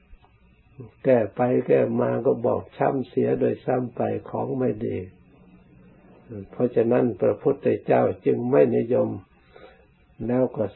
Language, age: Thai, 60-79